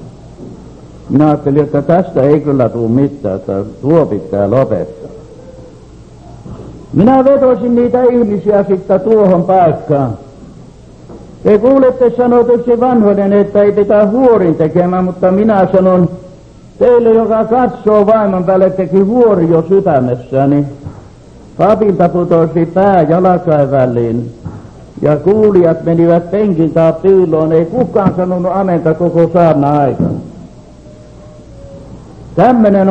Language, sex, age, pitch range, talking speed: English, male, 60-79, 145-205 Hz, 100 wpm